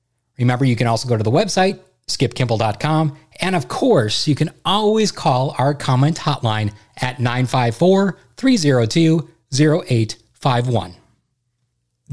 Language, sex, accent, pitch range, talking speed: English, male, American, 120-170 Hz, 105 wpm